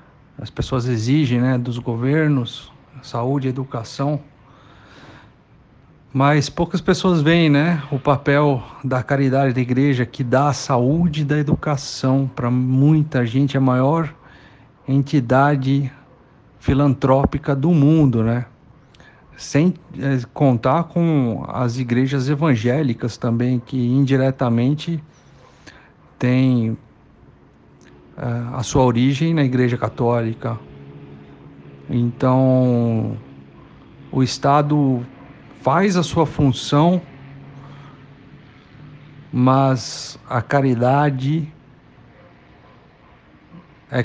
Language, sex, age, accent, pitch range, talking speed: Portuguese, male, 50-69, Brazilian, 125-145 Hz, 85 wpm